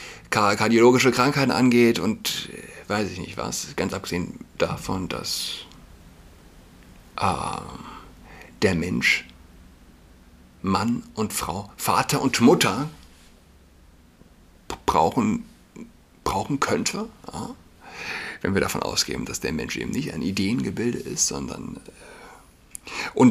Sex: male